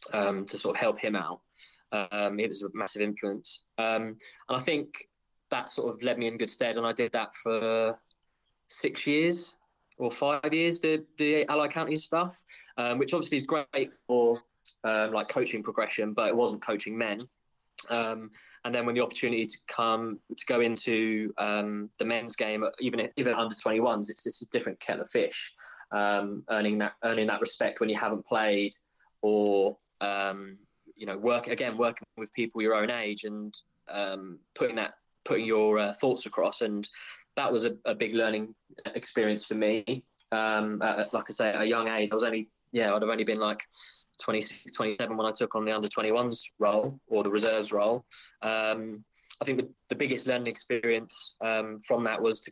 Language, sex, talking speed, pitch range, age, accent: English, male, 190 wpm, 105-120 Hz, 20-39, British